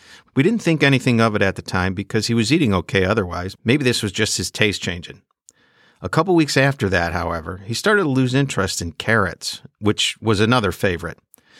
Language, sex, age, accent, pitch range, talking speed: English, male, 50-69, American, 95-125 Hz, 200 wpm